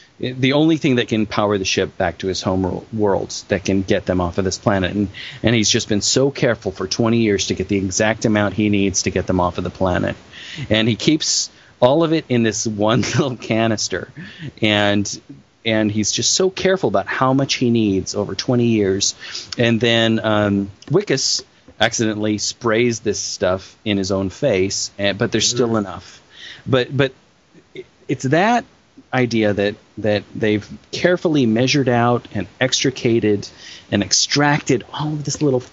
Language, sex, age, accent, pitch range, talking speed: English, male, 30-49, American, 100-140 Hz, 175 wpm